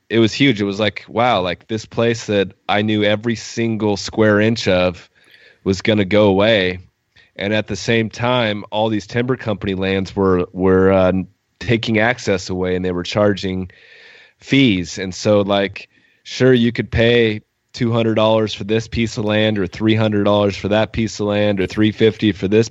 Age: 30-49